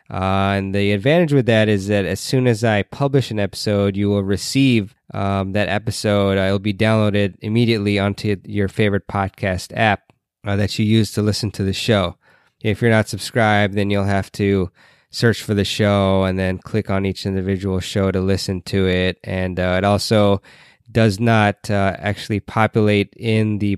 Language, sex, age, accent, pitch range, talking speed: English, male, 20-39, American, 95-115 Hz, 185 wpm